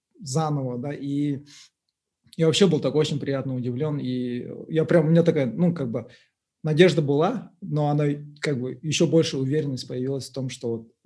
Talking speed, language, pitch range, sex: 180 wpm, Russian, 130-160 Hz, male